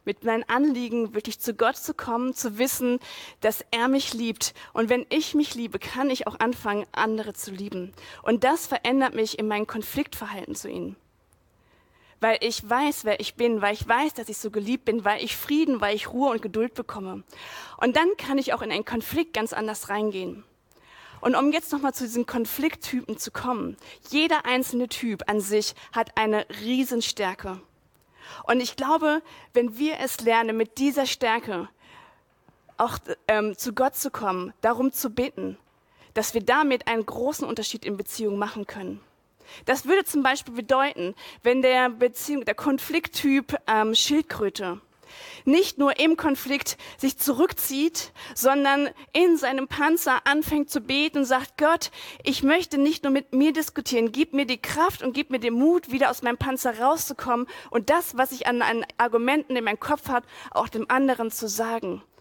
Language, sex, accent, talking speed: German, female, German, 175 wpm